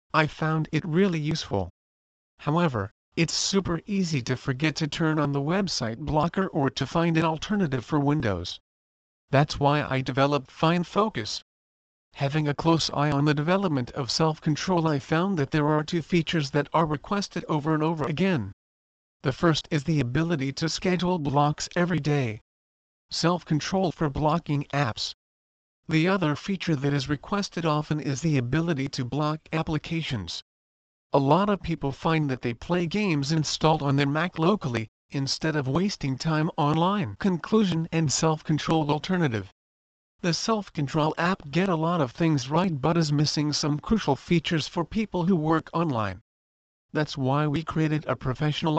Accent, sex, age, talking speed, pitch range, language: American, male, 50-69, 160 wpm, 135-165 Hz, English